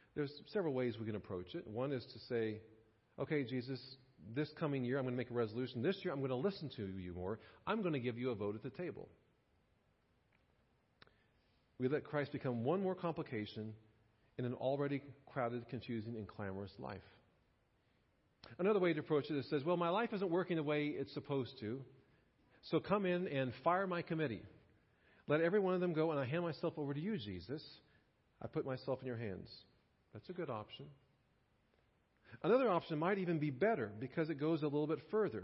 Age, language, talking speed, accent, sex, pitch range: 40-59, English, 200 wpm, American, male, 110-155 Hz